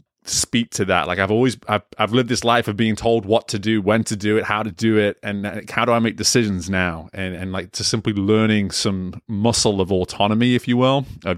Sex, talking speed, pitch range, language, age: male, 245 wpm, 95-110 Hz, English, 30-49